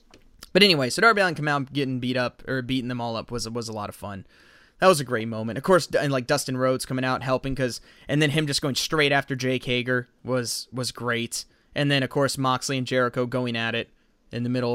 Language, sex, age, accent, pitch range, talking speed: English, male, 20-39, American, 125-165 Hz, 250 wpm